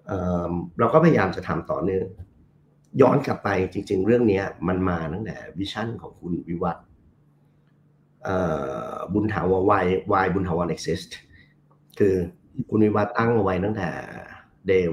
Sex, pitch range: male, 95-110 Hz